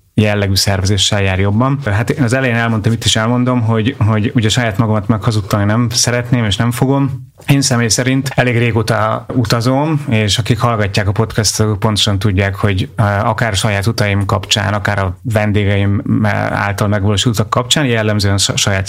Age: 30-49